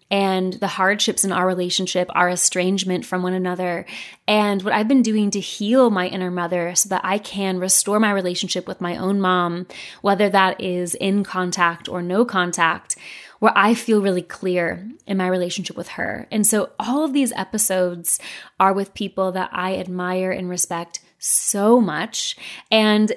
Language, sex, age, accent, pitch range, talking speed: English, female, 20-39, American, 180-210 Hz, 175 wpm